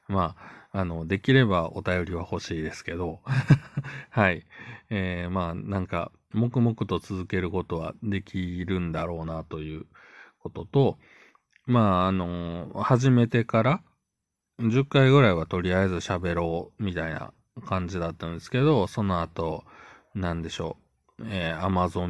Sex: male